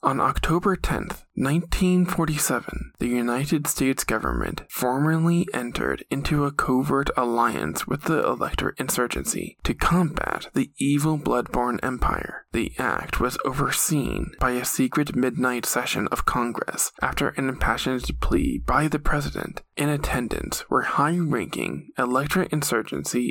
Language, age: English, 20-39